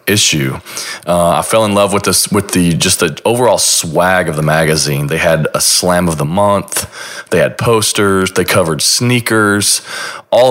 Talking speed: 175 wpm